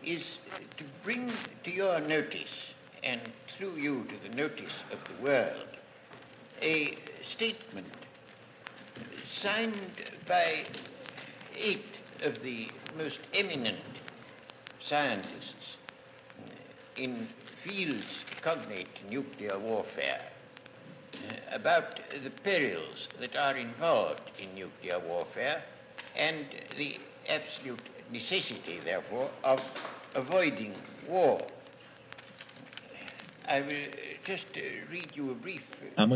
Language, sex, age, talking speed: Persian, male, 60-79, 70 wpm